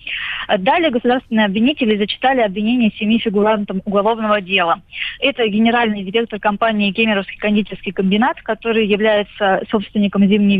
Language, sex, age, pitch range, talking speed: Russian, female, 20-39, 205-240 Hz, 115 wpm